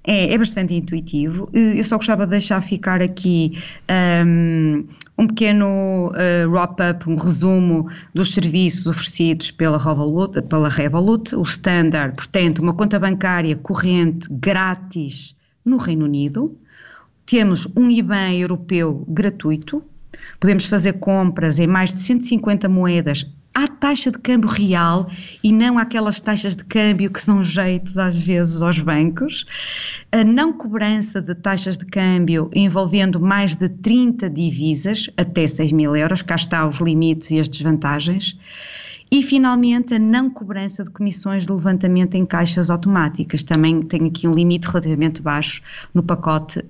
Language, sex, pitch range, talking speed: English, female, 165-200 Hz, 140 wpm